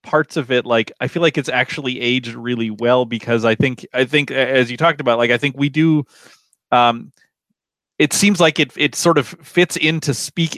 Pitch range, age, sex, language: 120-160 Hz, 30-49, male, English